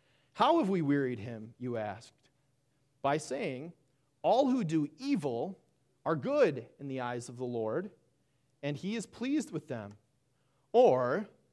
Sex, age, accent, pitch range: male, 30-49, American, 140-185 Hz